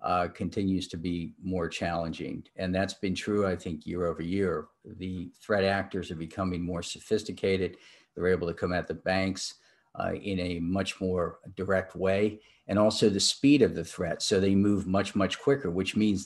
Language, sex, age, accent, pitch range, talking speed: English, male, 50-69, American, 95-110 Hz, 190 wpm